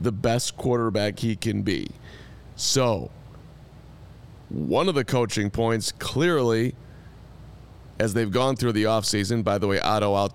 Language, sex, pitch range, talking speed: English, male, 110-145 Hz, 140 wpm